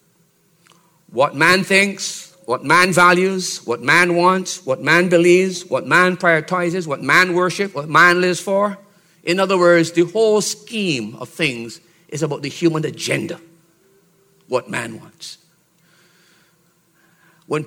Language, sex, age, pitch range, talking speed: English, male, 50-69, 140-180 Hz, 130 wpm